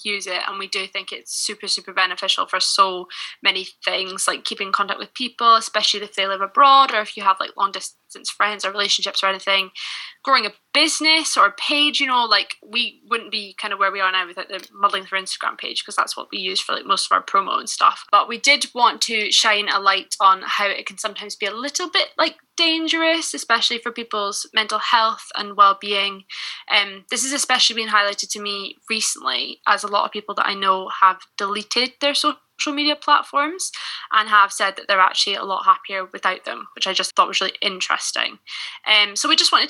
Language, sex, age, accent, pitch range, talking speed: English, female, 10-29, British, 195-240 Hz, 220 wpm